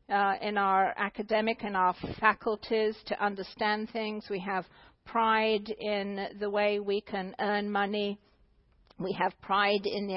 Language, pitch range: English, 190-220 Hz